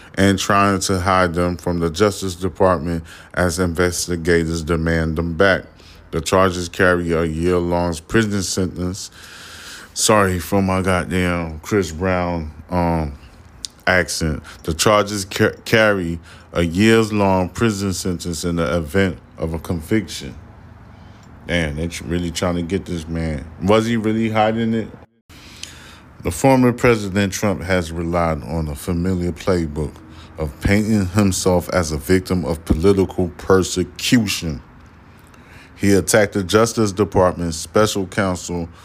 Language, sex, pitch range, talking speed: English, male, 85-100 Hz, 130 wpm